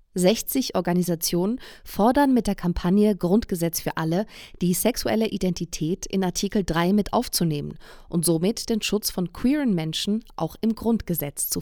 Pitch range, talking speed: 170-210 Hz, 145 wpm